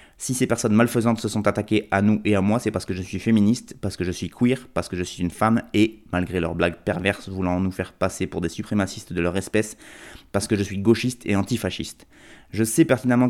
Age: 20-39